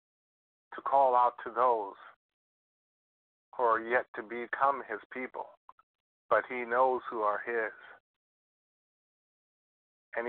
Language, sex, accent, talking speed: English, male, American, 110 wpm